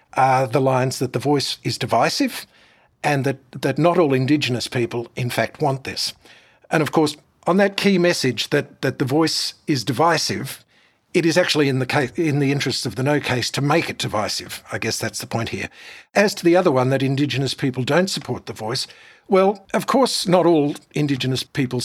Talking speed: 195 wpm